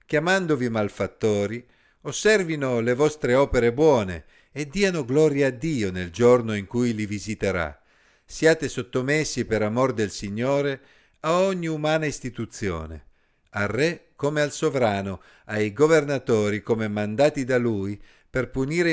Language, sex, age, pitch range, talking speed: Italian, male, 50-69, 100-145 Hz, 130 wpm